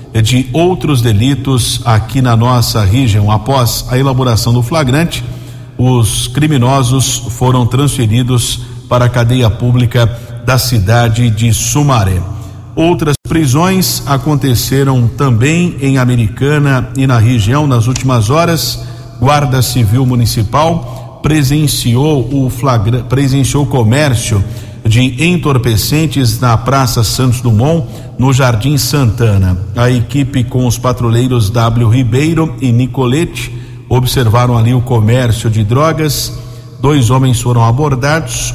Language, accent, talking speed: Portuguese, Brazilian, 115 wpm